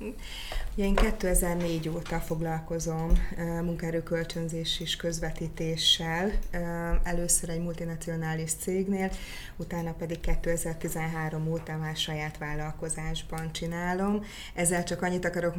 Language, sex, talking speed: Hungarian, female, 90 wpm